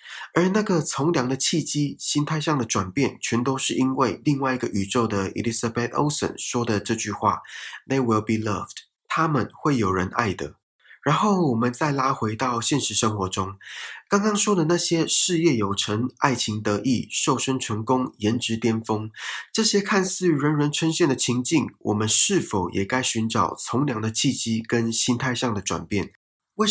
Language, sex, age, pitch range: Chinese, male, 20-39, 110-150 Hz